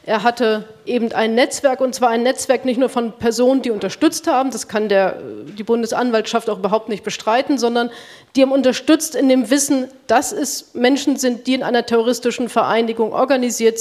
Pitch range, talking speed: 220-255 Hz, 185 wpm